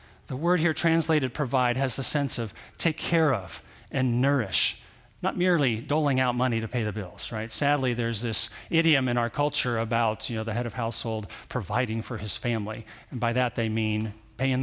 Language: English